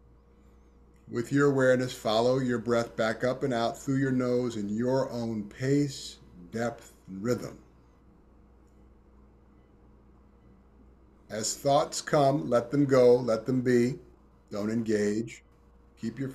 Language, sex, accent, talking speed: English, male, American, 120 wpm